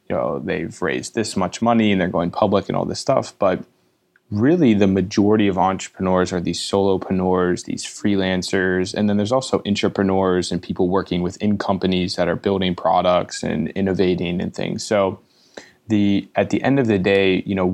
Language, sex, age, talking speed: English, male, 20-39, 185 wpm